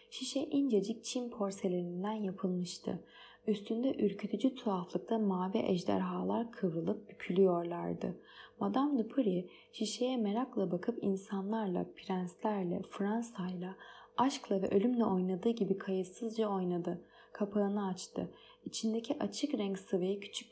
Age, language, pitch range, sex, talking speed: 20-39, Turkish, 190-225 Hz, female, 100 wpm